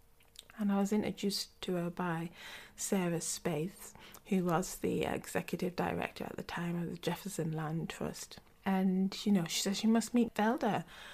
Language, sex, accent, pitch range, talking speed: English, female, British, 175-210 Hz, 165 wpm